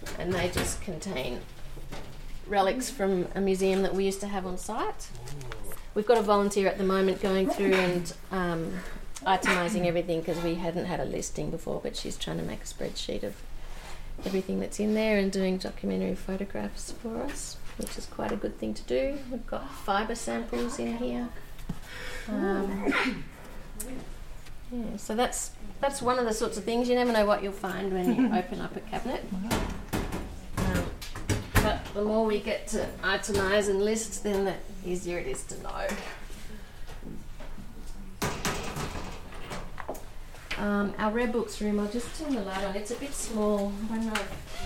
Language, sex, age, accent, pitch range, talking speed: English, female, 30-49, Australian, 185-220 Hz, 160 wpm